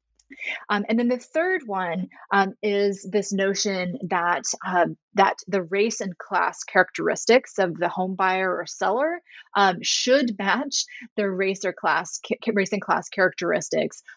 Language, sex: English, female